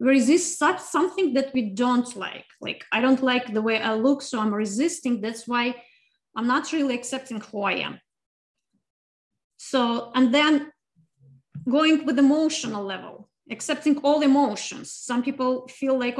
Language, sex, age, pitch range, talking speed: English, female, 30-49, 230-280 Hz, 150 wpm